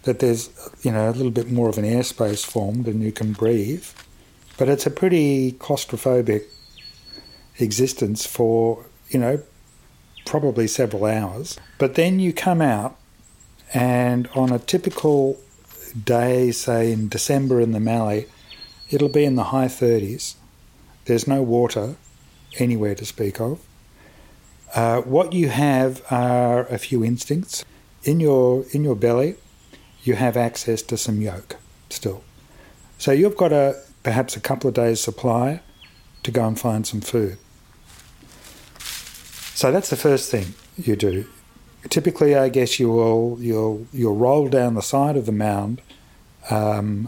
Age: 50-69